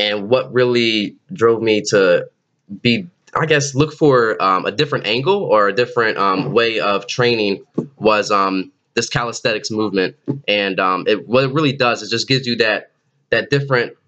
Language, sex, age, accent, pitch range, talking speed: English, male, 20-39, American, 105-145 Hz, 170 wpm